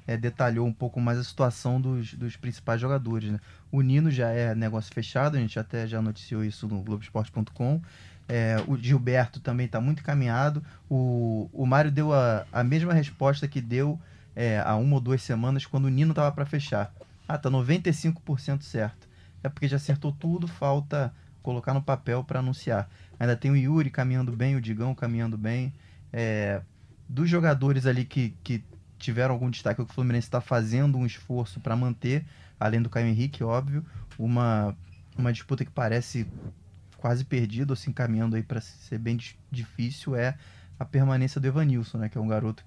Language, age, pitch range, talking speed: Portuguese, 20-39, 110-135 Hz, 185 wpm